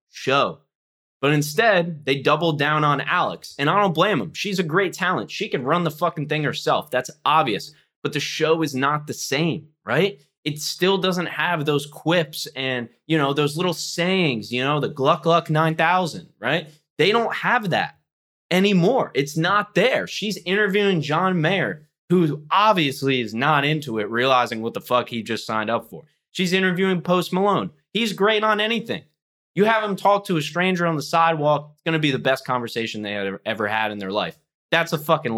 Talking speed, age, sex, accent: 195 wpm, 20-39, male, American